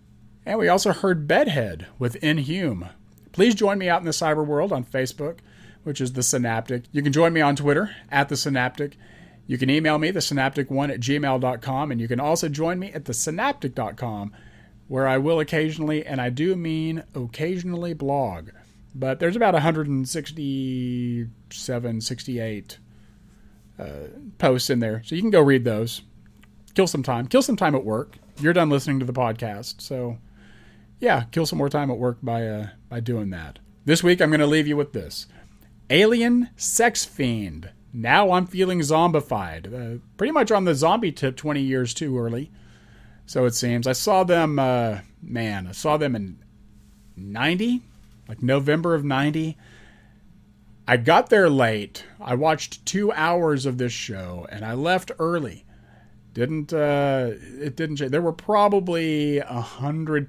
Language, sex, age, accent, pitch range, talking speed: English, male, 40-59, American, 115-155 Hz, 165 wpm